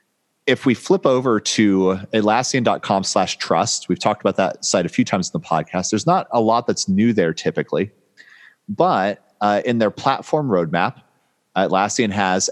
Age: 30-49